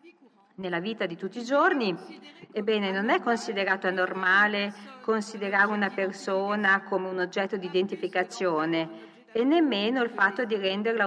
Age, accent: 40-59, native